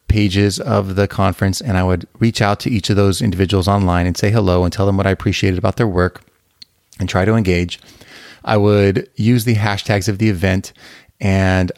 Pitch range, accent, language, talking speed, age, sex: 95-115 Hz, American, English, 205 wpm, 30-49, male